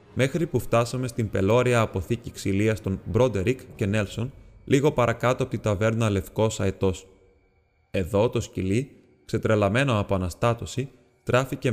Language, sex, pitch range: Greek, male, 100-125 Hz